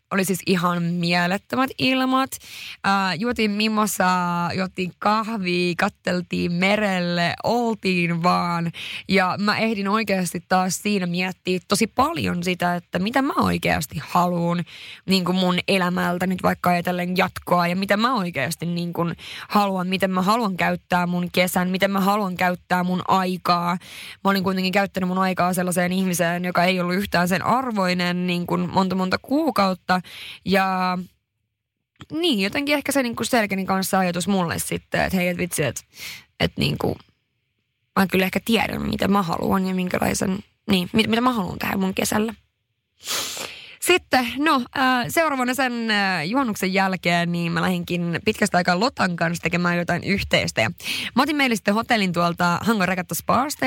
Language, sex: Finnish, female